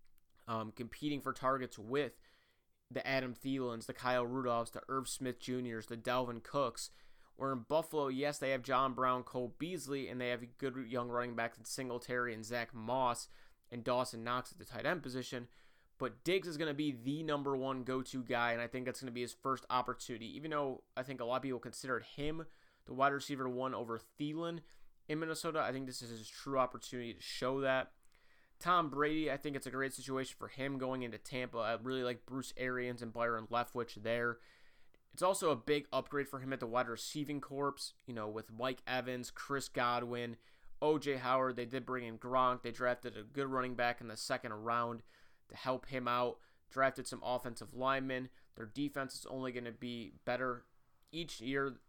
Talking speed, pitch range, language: 200 wpm, 120-135 Hz, English